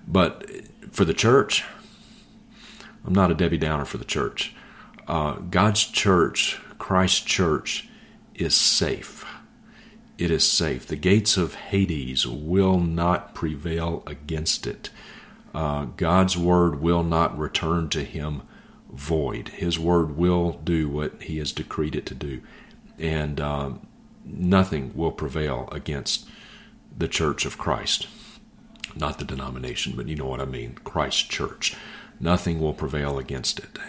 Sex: male